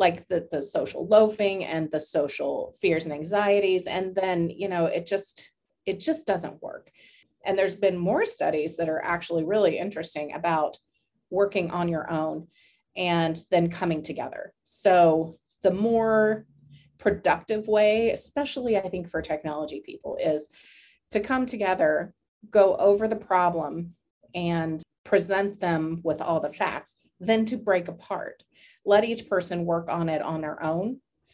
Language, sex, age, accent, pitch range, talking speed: English, female, 30-49, American, 165-215 Hz, 150 wpm